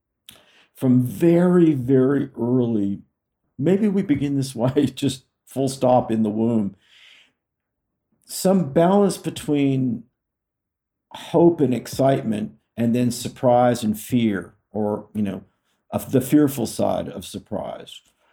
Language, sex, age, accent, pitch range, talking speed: English, male, 50-69, American, 110-140 Hz, 110 wpm